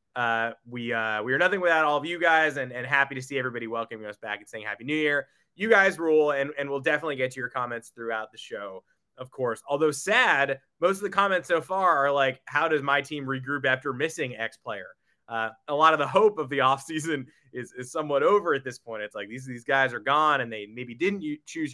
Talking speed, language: 250 wpm, English